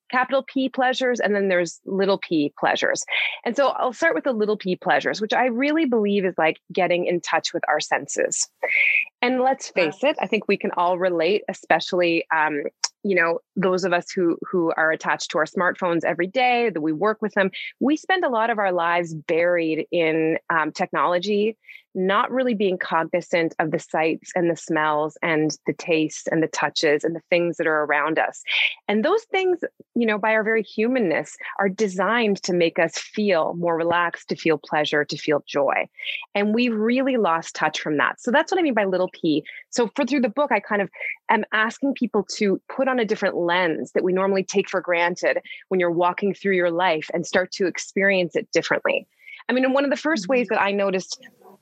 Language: English